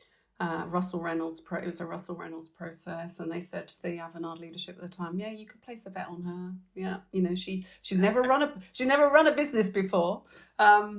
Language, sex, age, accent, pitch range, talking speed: English, female, 40-59, British, 165-195 Hz, 235 wpm